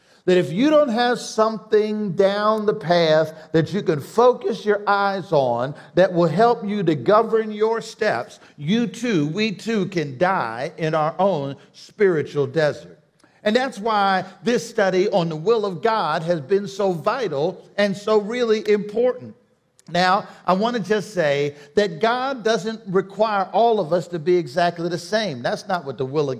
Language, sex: English, male